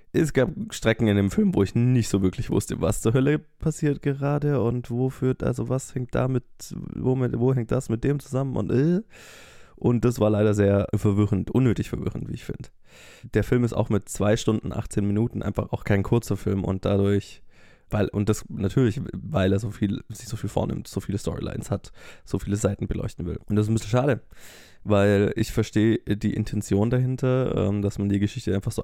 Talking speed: 200 wpm